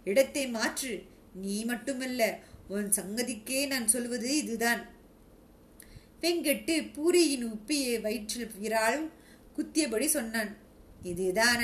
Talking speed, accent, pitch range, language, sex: 80 wpm, native, 215-265 Hz, Tamil, female